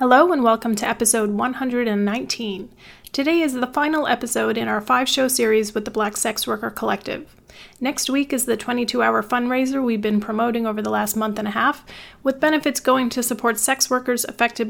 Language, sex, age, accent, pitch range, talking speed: English, female, 30-49, American, 220-255 Hz, 185 wpm